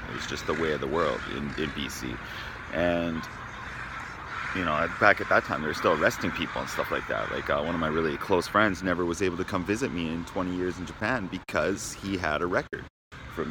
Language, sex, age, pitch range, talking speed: English, male, 30-49, 85-110 Hz, 235 wpm